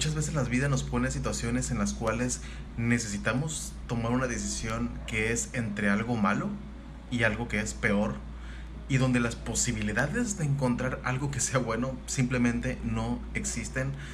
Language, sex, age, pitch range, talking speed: Spanish, male, 30-49, 110-140 Hz, 155 wpm